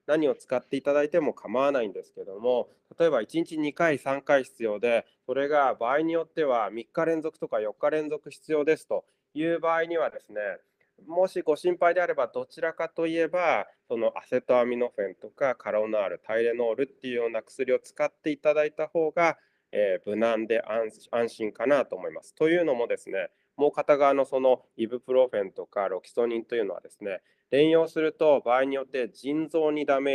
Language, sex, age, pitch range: Japanese, male, 20-39, 125-170 Hz